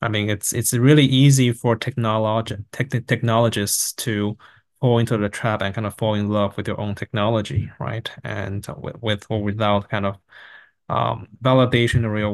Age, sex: 20-39, male